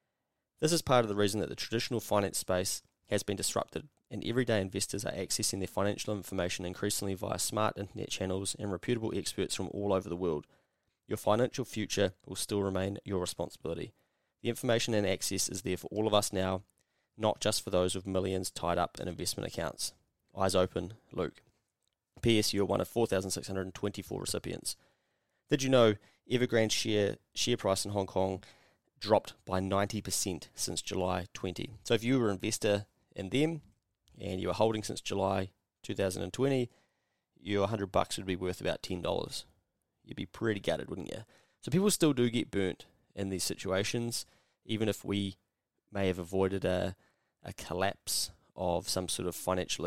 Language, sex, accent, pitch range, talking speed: English, male, Australian, 95-110 Hz, 170 wpm